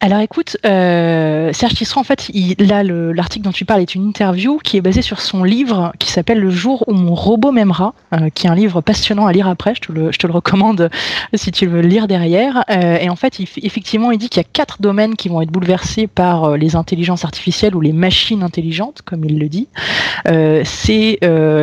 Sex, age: female, 30-49